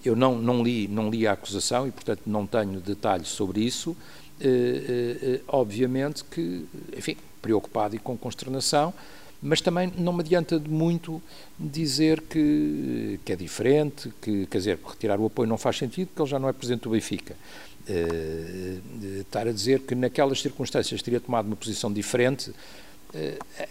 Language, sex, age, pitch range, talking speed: Portuguese, male, 60-79, 115-155 Hz, 165 wpm